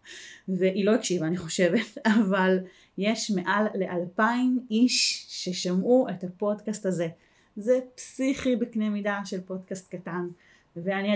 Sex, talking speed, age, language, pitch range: female, 120 wpm, 30-49, Hebrew, 190-230 Hz